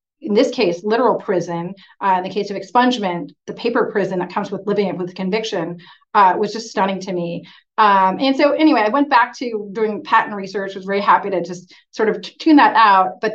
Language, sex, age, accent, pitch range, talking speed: English, female, 30-49, American, 185-220 Hz, 215 wpm